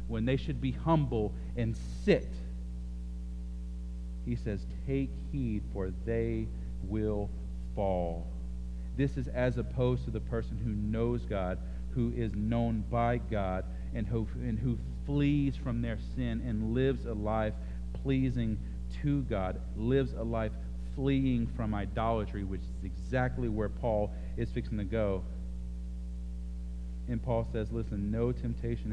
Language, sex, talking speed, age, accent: English, male, 135 wpm, 40-59, American